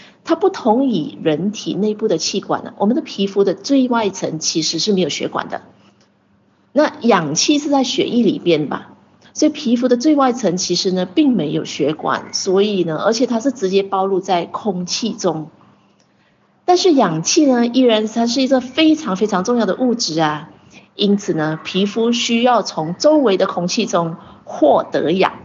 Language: Chinese